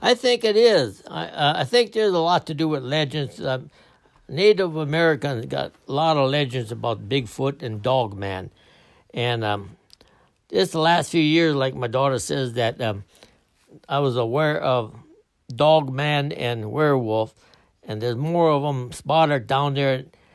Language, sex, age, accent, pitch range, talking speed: English, male, 60-79, American, 120-155 Hz, 160 wpm